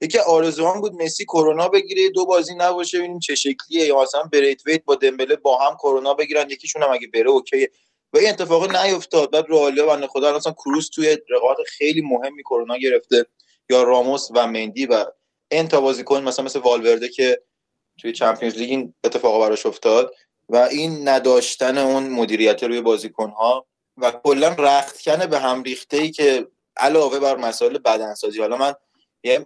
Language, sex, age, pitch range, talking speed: Persian, male, 20-39, 125-180 Hz, 165 wpm